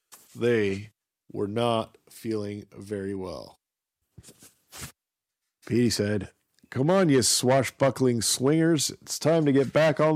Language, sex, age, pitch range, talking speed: English, male, 40-59, 100-130 Hz, 110 wpm